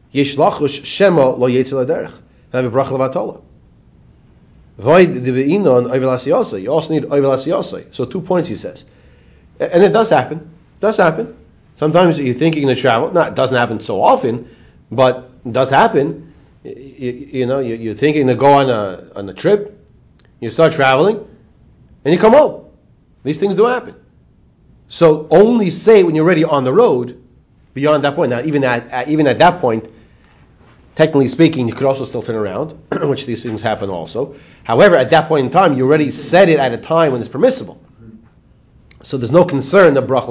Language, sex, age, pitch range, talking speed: English, male, 30-49, 125-165 Hz, 160 wpm